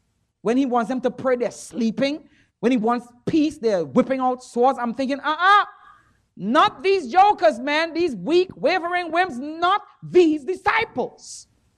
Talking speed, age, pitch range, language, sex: 160 wpm, 40-59, 230-345 Hz, English, male